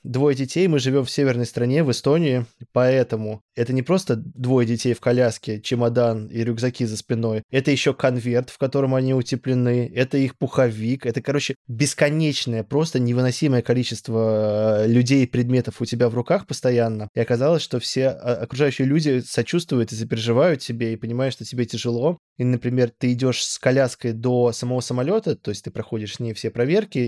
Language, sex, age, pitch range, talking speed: Russian, male, 20-39, 115-135 Hz, 170 wpm